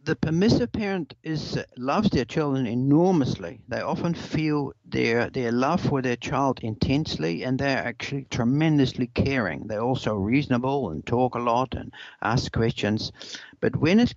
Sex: male